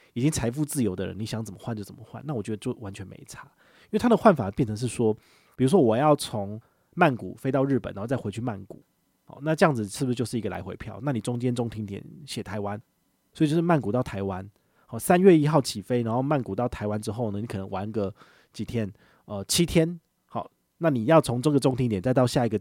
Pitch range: 105-135 Hz